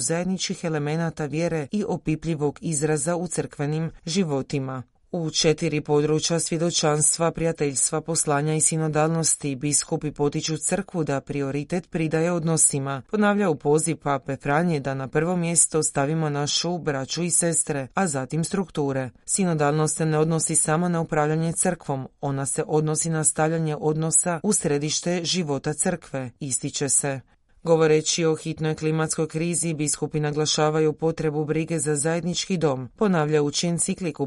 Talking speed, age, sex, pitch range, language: 135 wpm, 30-49, female, 145-165 Hz, Croatian